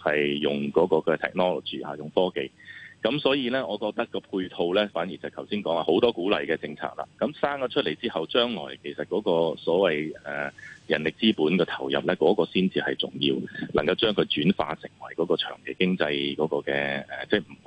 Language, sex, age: Chinese, male, 30-49